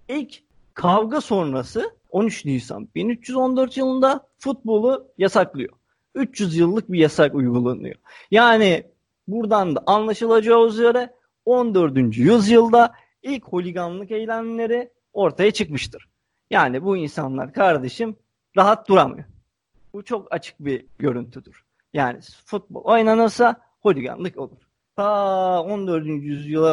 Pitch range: 155-230 Hz